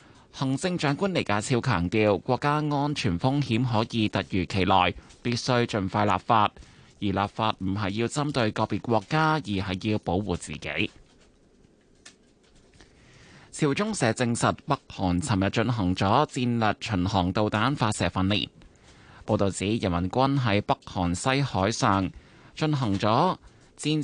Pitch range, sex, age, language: 95-135 Hz, male, 20-39, Chinese